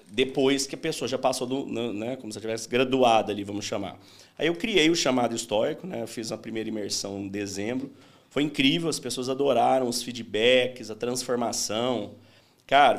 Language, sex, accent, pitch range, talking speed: Portuguese, male, Brazilian, 105-140 Hz, 185 wpm